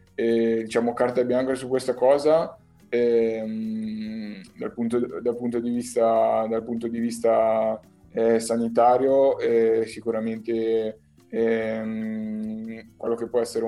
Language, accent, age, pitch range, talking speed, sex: Italian, native, 20-39, 110-115 Hz, 115 wpm, male